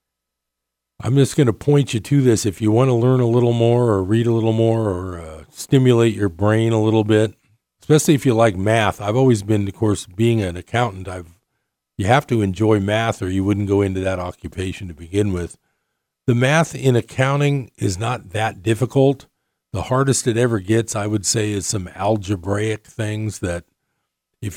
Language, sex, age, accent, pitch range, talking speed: English, male, 50-69, American, 95-115 Hz, 195 wpm